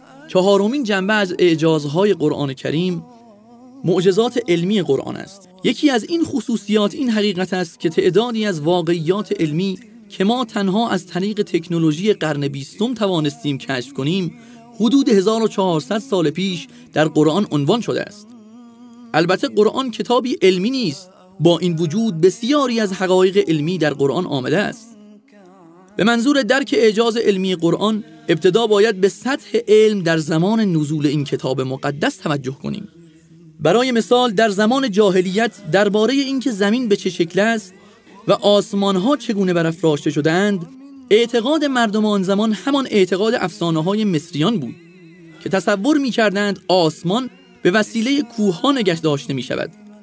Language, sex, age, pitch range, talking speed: Persian, male, 30-49, 170-230 Hz, 140 wpm